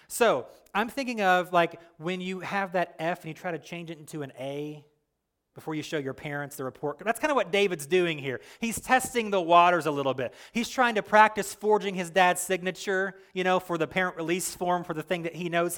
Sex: male